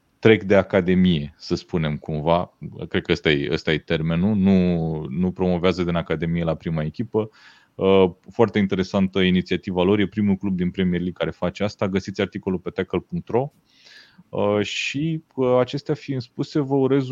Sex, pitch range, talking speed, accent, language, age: male, 95-120 Hz, 155 wpm, native, Romanian, 30-49